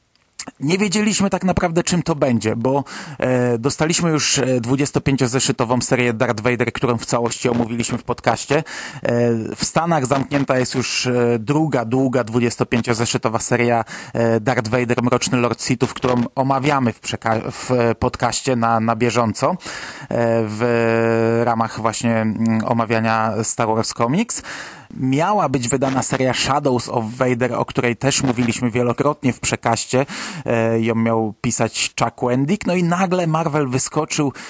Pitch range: 120-155 Hz